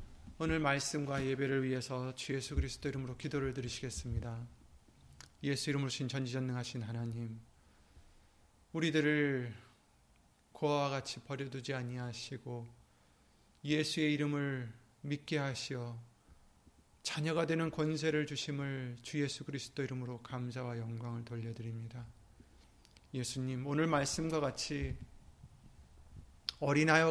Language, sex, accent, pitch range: Korean, male, native, 120-150 Hz